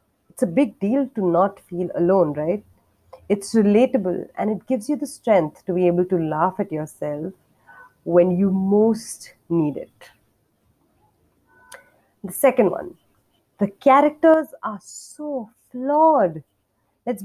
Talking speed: 130 wpm